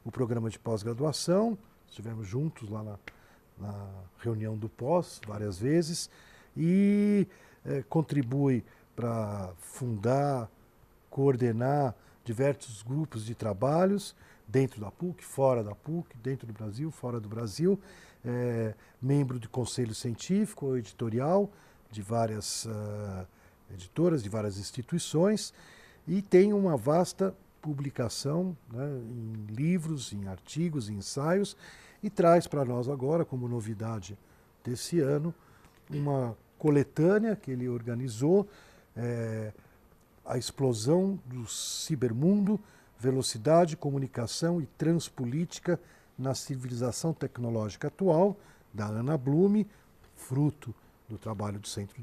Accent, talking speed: Brazilian, 105 wpm